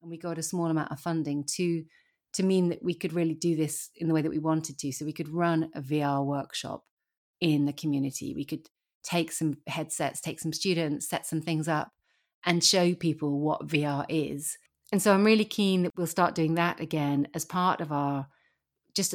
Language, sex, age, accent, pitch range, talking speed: English, female, 30-49, British, 150-175 Hz, 215 wpm